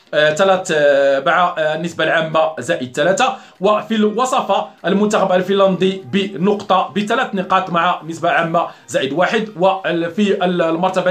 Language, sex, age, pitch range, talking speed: Arabic, male, 40-59, 170-205 Hz, 120 wpm